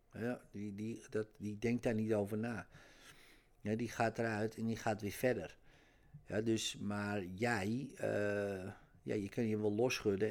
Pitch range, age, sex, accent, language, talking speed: 105-130 Hz, 50-69, male, Dutch, Dutch, 175 wpm